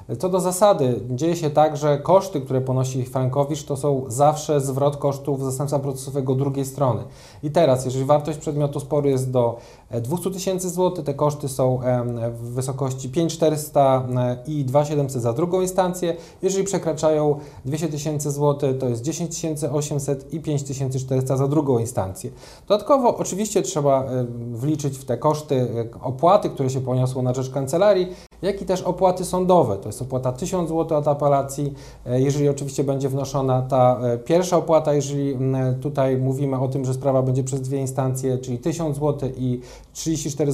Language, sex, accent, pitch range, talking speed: Polish, male, native, 130-160 Hz, 155 wpm